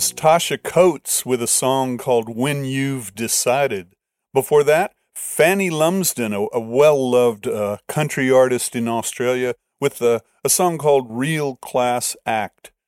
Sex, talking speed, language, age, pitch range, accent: male, 130 wpm, English, 50-69, 120-145 Hz, American